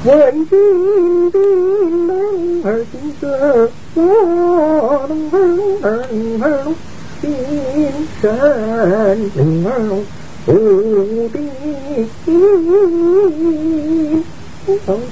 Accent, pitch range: American, 220-335 Hz